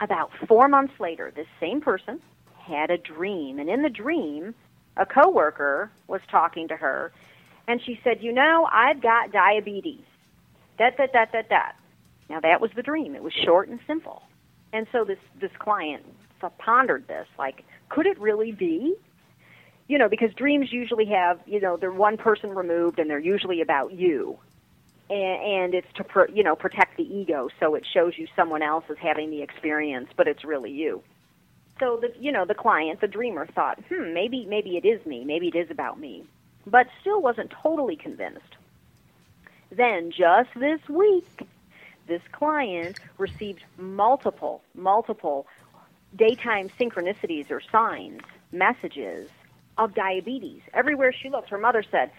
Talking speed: 160 wpm